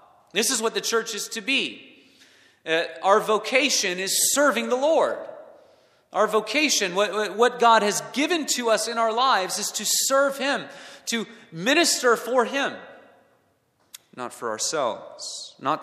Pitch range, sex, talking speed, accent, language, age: 130-215 Hz, male, 150 wpm, American, English, 30-49